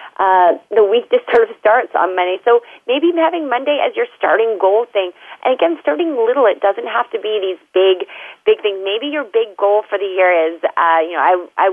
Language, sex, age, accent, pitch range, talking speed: English, female, 30-49, American, 185-295 Hz, 225 wpm